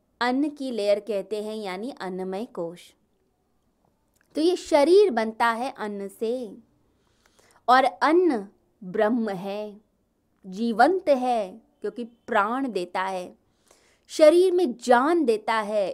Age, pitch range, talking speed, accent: 20-39, 200-265 Hz, 115 wpm, native